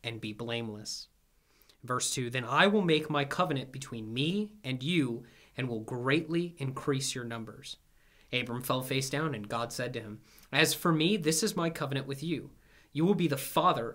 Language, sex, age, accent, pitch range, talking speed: English, male, 30-49, American, 125-165 Hz, 190 wpm